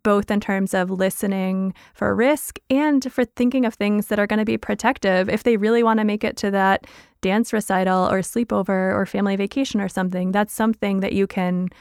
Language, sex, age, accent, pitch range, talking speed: English, female, 20-39, American, 190-215 Hz, 210 wpm